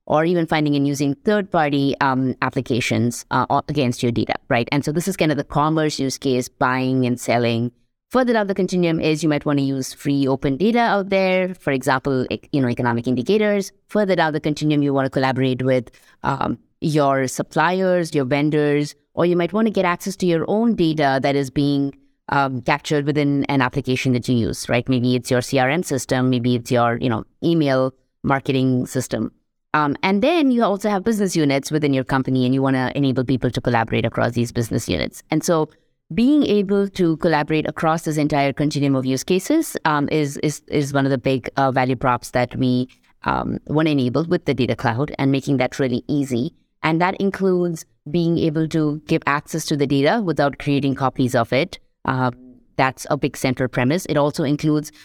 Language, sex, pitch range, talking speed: English, female, 130-160 Hz, 200 wpm